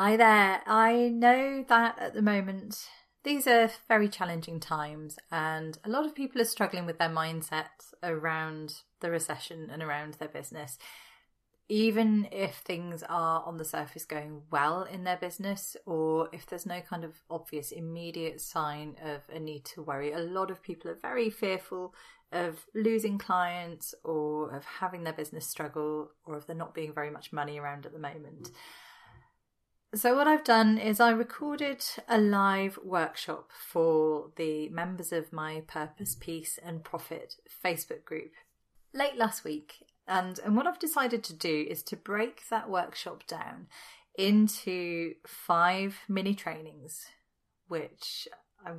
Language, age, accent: English, 30-49, British